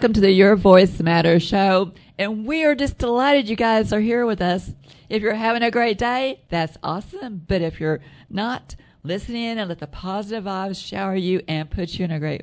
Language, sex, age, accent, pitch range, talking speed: English, female, 50-69, American, 155-210 Hz, 215 wpm